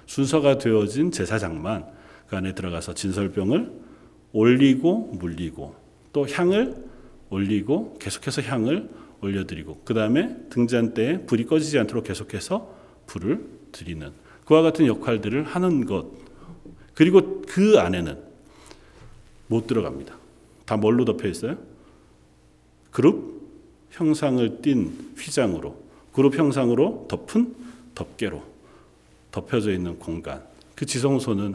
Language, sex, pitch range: Korean, male, 100-145 Hz